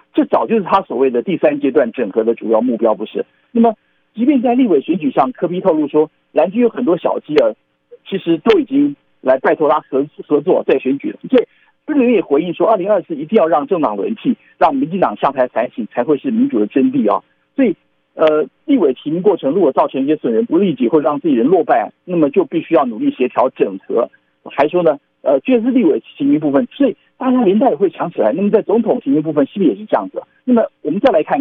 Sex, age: male, 50-69